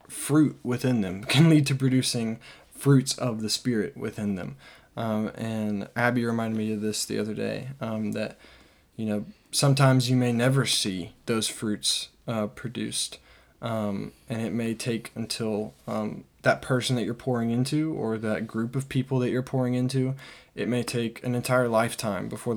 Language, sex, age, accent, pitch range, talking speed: English, male, 10-29, American, 105-125 Hz, 175 wpm